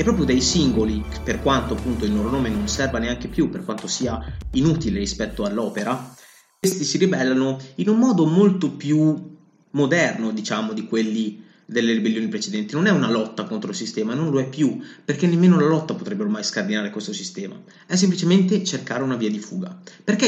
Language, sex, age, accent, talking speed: Italian, male, 30-49, native, 185 wpm